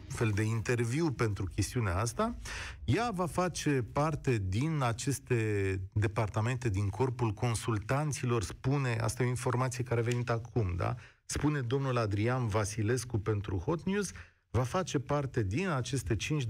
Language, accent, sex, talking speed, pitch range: Romanian, native, male, 140 wpm, 110-145 Hz